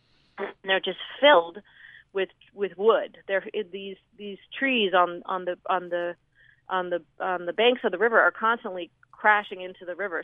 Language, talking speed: English, 175 wpm